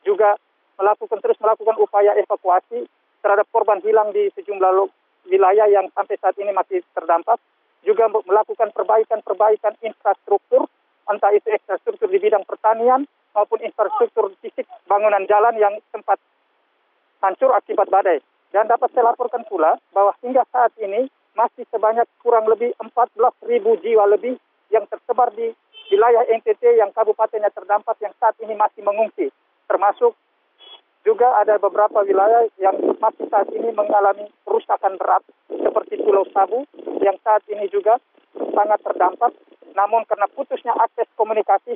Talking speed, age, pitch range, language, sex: 135 wpm, 50-69, 205-245 Hz, Indonesian, male